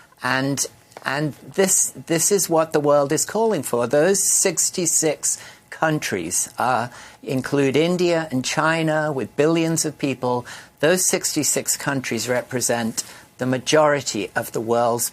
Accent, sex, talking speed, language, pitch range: British, male, 125 wpm, English, 120-155 Hz